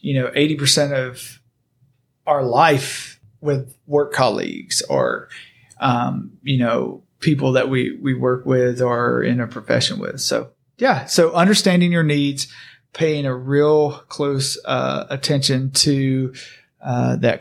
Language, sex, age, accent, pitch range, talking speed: English, male, 40-59, American, 130-150 Hz, 140 wpm